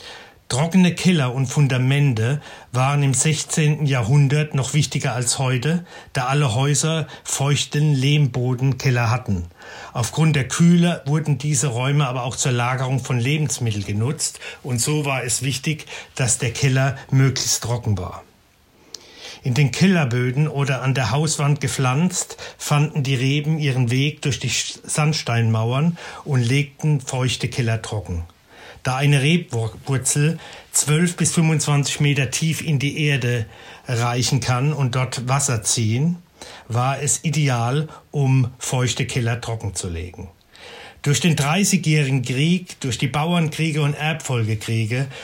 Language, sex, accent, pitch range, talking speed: German, male, German, 125-150 Hz, 130 wpm